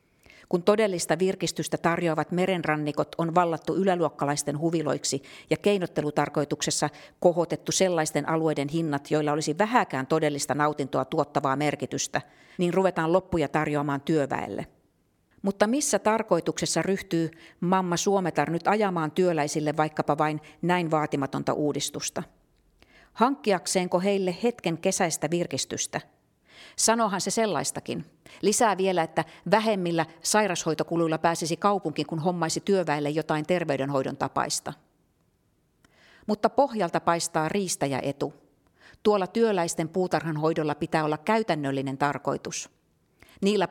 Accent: native